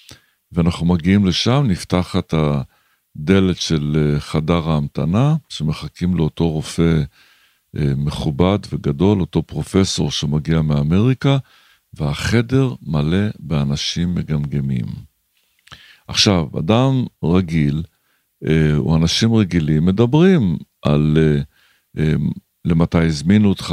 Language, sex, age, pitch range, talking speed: Hebrew, male, 60-79, 80-105 Hz, 80 wpm